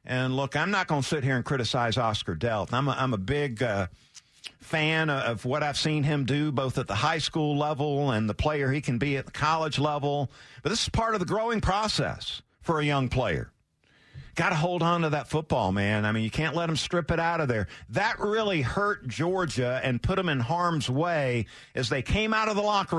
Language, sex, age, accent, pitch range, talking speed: English, male, 50-69, American, 125-160 Hz, 230 wpm